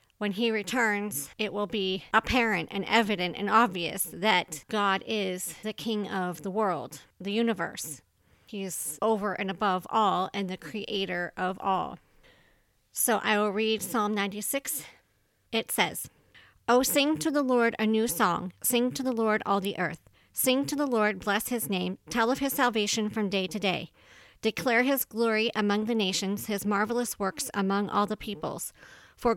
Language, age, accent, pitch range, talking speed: English, 40-59, American, 200-230 Hz, 175 wpm